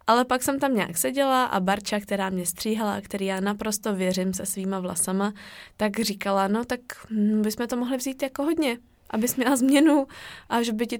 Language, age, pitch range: Czech, 20-39, 190-225 Hz